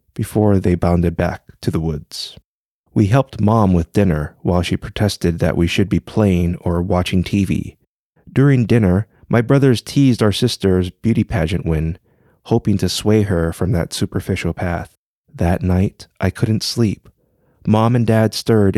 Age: 30-49